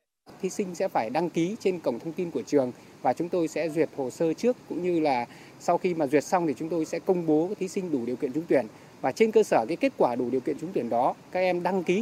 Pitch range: 135-210 Hz